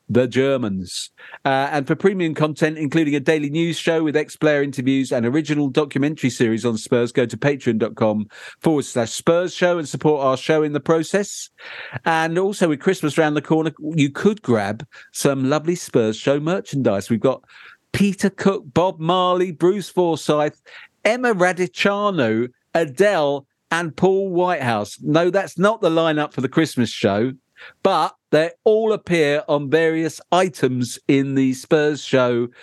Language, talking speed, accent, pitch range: English, 155 wpm, British, 125-165 Hz